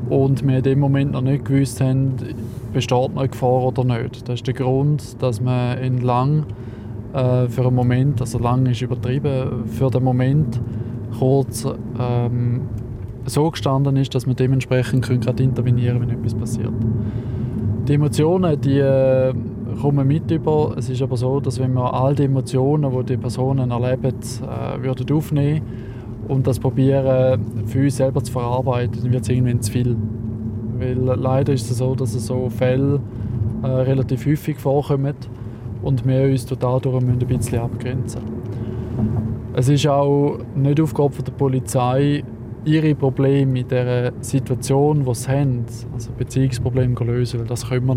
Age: 20-39